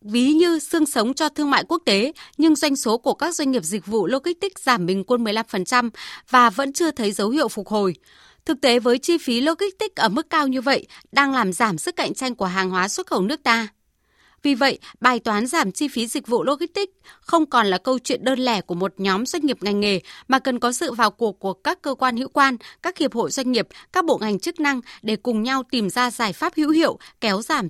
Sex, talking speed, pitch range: female, 245 wpm, 225-305 Hz